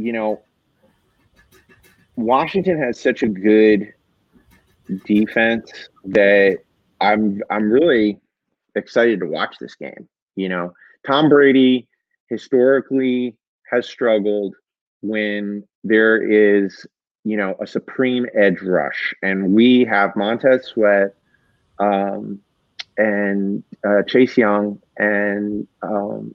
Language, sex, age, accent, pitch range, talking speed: English, male, 30-49, American, 100-125 Hz, 100 wpm